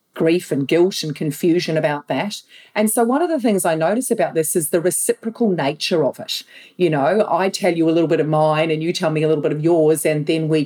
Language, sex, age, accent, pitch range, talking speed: English, female, 40-59, Australian, 155-195 Hz, 255 wpm